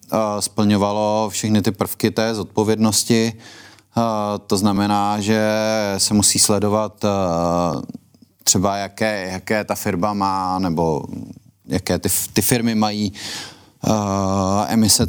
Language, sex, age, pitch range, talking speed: Czech, male, 30-49, 95-105 Hz, 100 wpm